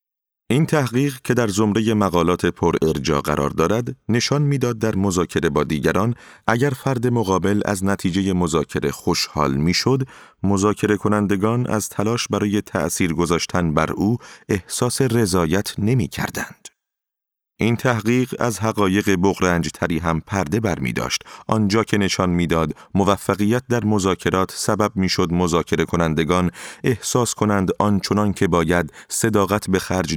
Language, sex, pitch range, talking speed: Persian, male, 85-115 Hz, 125 wpm